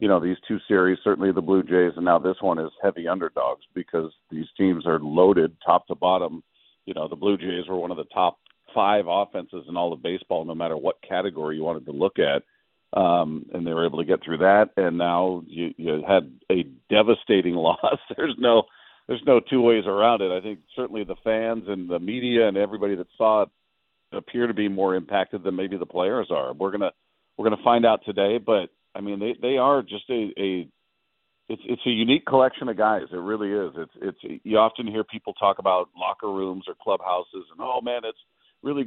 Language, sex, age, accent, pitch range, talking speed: English, male, 50-69, American, 90-115 Hz, 215 wpm